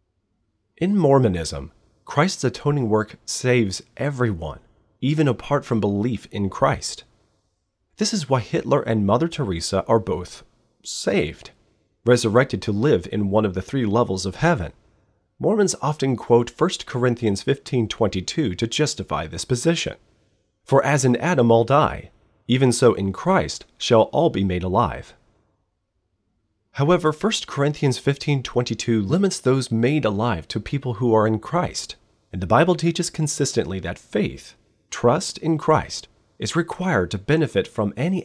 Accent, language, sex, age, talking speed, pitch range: American, English, male, 30-49, 140 wpm, 100-135 Hz